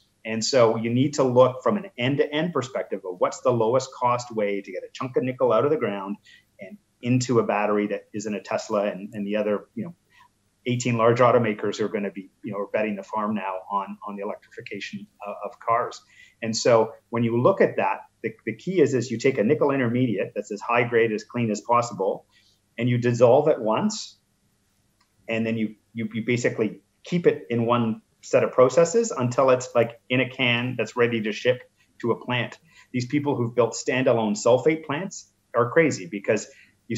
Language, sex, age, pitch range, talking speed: English, male, 30-49, 110-130 Hz, 210 wpm